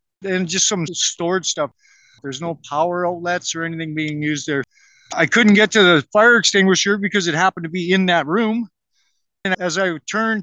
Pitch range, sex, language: 160-185 Hz, male, English